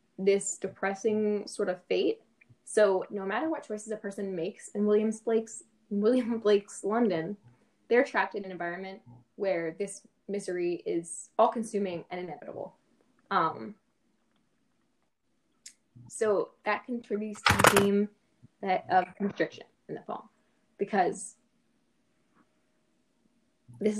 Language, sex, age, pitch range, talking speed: English, female, 10-29, 185-220 Hz, 115 wpm